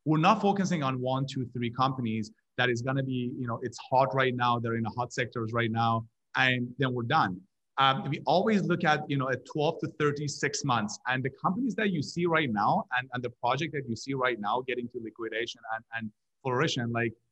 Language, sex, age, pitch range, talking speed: English, male, 30-49, 125-165 Hz, 230 wpm